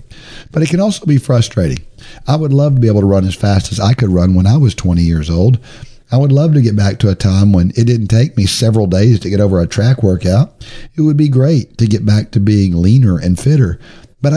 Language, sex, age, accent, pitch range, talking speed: English, male, 50-69, American, 105-140 Hz, 255 wpm